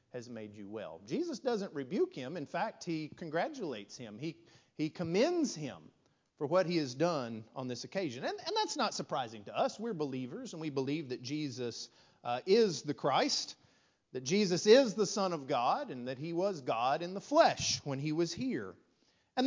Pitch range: 115-190 Hz